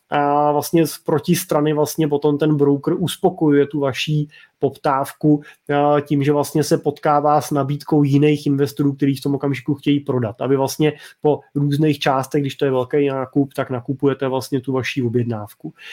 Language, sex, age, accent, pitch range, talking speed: Czech, male, 20-39, native, 140-160 Hz, 165 wpm